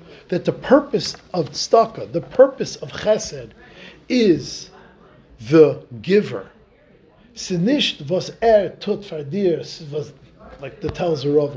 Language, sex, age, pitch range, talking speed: English, male, 50-69, 150-200 Hz, 90 wpm